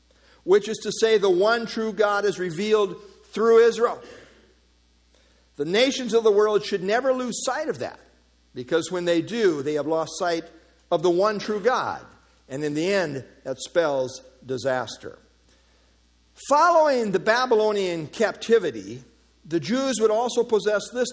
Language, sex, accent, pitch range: English, male, American, 130-205 Hz